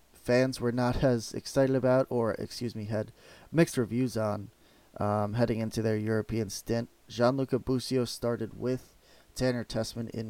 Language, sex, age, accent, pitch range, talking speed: English, male, 20-39, American, 110-125 Hz, 155 wpm